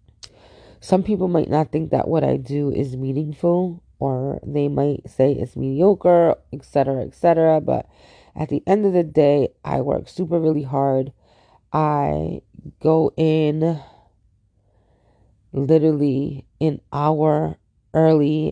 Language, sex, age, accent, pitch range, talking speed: English, female, 30-49, American, 110-160 Hz, 130 wpm